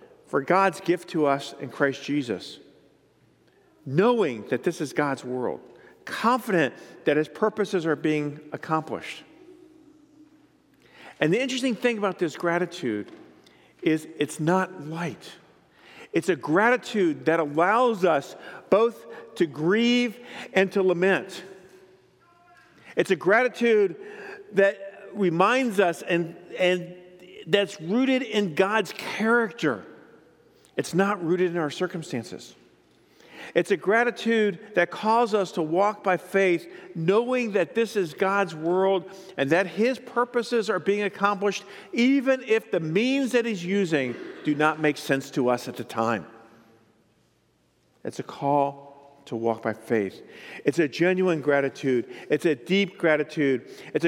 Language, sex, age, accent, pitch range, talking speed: English, male, 50-69, American, 155-220 Hz, 130 wpm